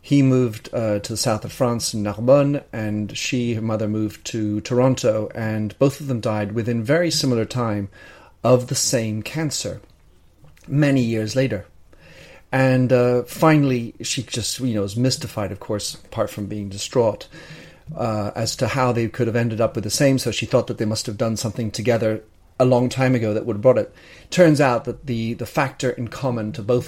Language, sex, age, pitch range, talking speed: English, male, 40-59, 105-130 Hz, 200 wpm